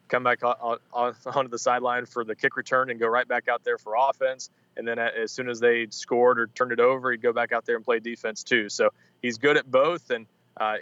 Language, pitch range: English, 120-140 Hz